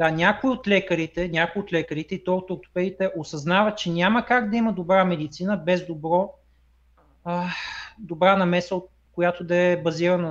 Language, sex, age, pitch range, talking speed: Bulgarian, male, 30-49, 155-205 Hz, 165 wpm